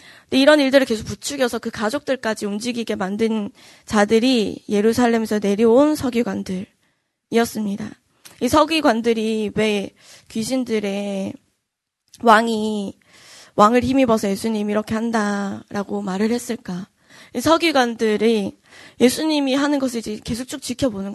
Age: 20-39